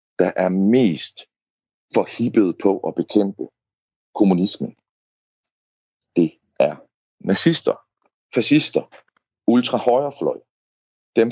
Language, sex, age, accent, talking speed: Danish, male, 60-79, native, 75 wpm